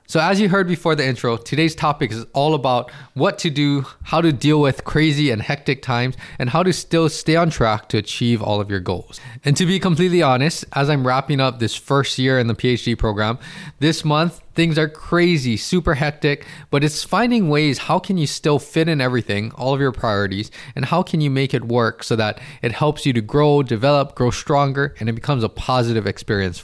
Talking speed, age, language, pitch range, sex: 220 wpm, 20-39, English, 110-155 Hz, male